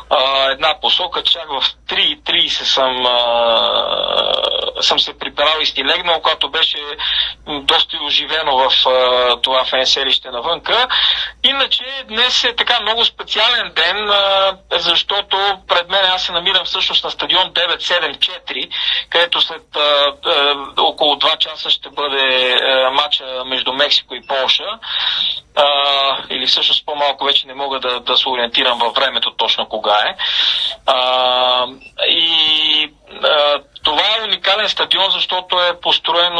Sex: male